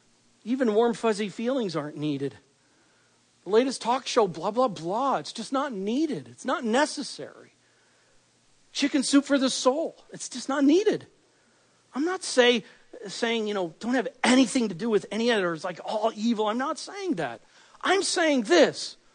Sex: male